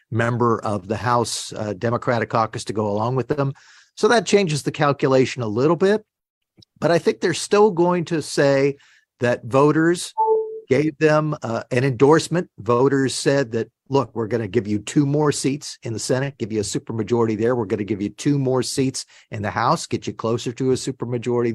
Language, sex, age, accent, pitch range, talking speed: English, male, 50-69, American, 120-150 Hz, 200 wpm